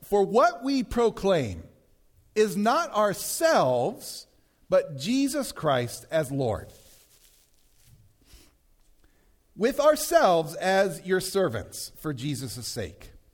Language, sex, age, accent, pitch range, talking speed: English, male, 50-69, American, 150-245 Hz, 90 wpm